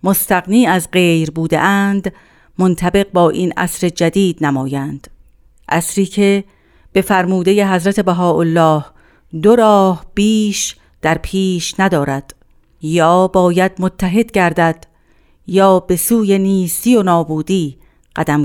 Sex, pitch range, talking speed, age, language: female, 165-200 Hz, 105 wpm, 50-69, Persian